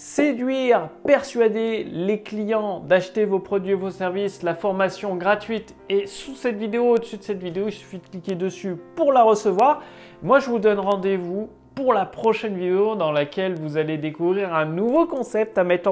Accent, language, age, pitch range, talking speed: French, French, 30-49, 180-250 Hz, 180 wpm